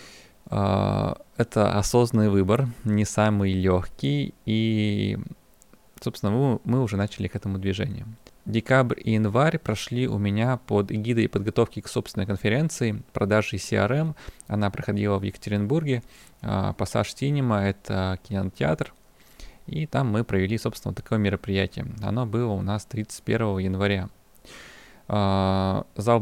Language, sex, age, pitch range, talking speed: Russian, male, 20-39, 100-120 Hz, 125 wpm